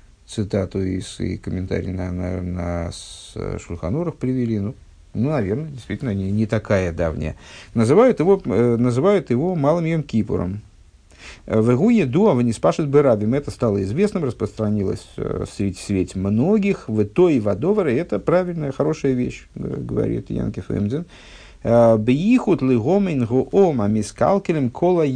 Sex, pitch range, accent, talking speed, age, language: male, 100-140 Hz, native, 120 wpm, 50-69, Russian